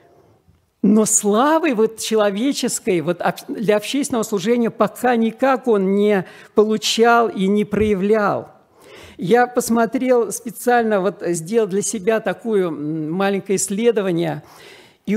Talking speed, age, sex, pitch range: 95 wpm, 50-69, male, 185-235 Hz